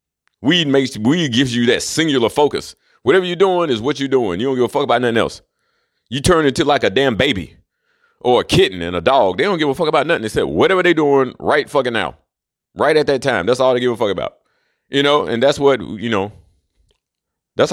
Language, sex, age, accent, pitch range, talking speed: English, male, 40-59, American, 105-135 Hz, 235 wpm